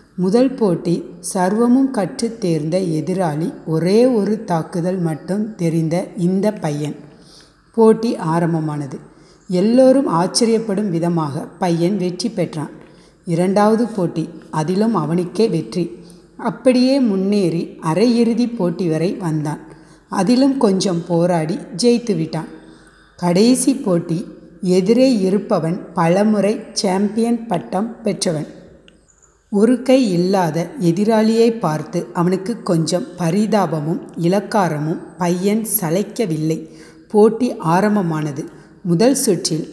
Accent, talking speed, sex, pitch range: native, 90 wpm, female, 165-210 Hz